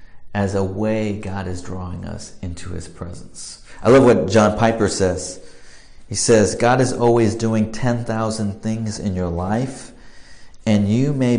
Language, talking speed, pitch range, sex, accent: English, 160 wpm, 95-115 Hz, male, American